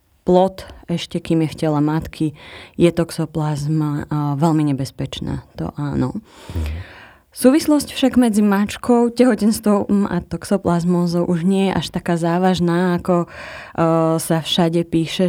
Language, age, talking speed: Slovak, 20-39, 120 wpm